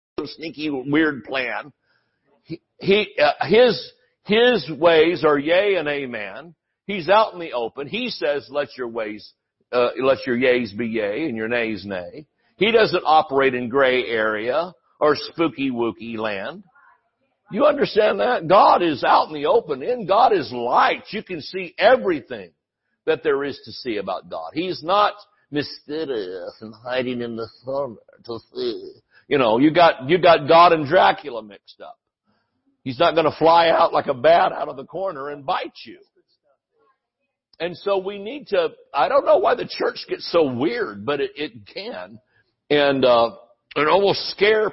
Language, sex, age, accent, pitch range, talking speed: English, male, 60-79, American, 140-210 Hz, 170 wpm